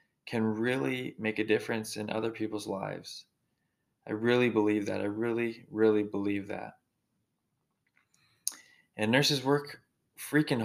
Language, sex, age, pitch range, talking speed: English, male, 20-39, 105-120 Hz, 125 wpm